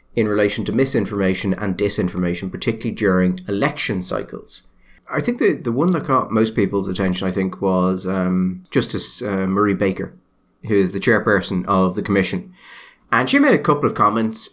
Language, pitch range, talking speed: English, 100-130 Hz, 175 wpm